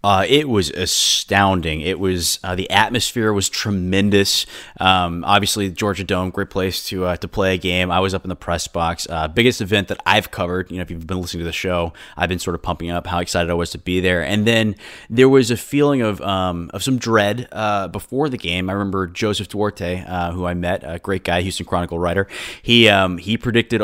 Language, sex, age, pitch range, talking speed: English, male, 20-39, 90-105 Hz, 230 wpm